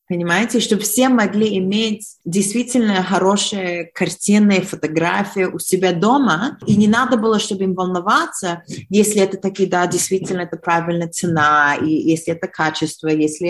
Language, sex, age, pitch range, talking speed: Russian, female, 20-39, 175-215 Hz, 140 wpm